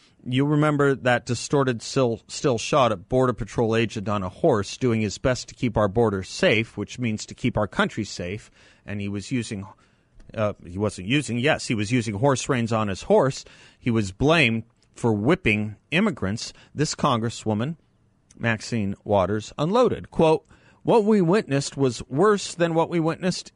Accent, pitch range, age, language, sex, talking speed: American, 110-150 Hz, 40-59, English, male, 170 wpm